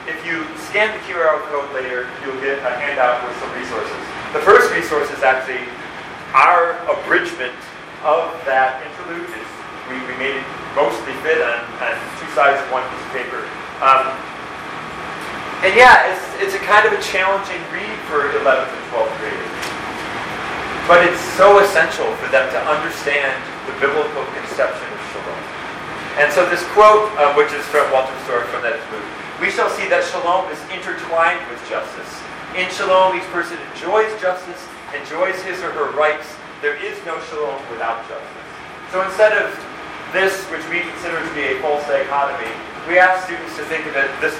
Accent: American